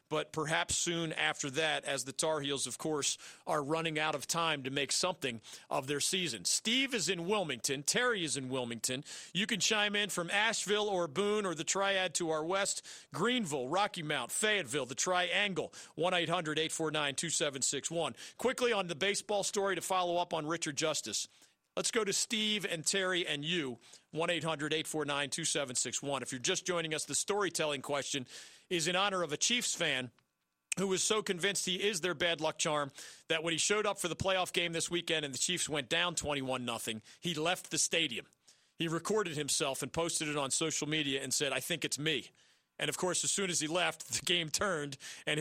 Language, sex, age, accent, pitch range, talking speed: English, male, 40-59, American, 145-185 Hz, 205 wpm